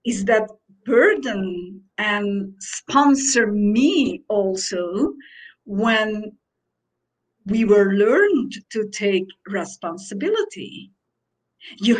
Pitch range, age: 195-250 Hz, 50-69